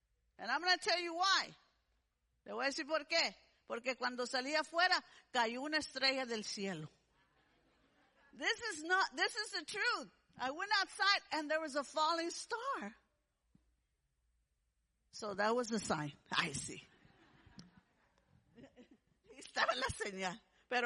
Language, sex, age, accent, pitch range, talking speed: English, female, 50-69, American, 275-385 Hz, 130 wpm